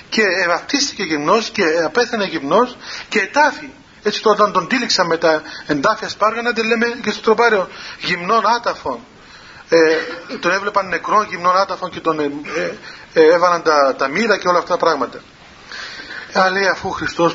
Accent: native